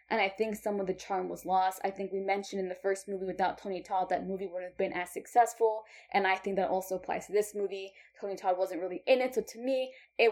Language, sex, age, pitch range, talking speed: English, female, 10-29, 190-225 Hz, 265 wpm